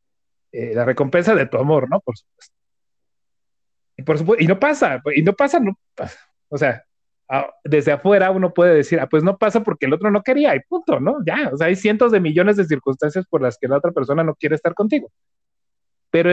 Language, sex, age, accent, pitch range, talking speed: Spanish, male, 30-49, Mexican, 145-195 Hz, 200 wpm